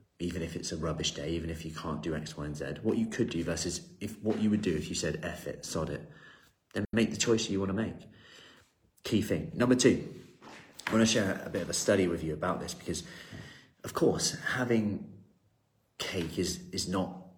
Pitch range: 80-95 Hz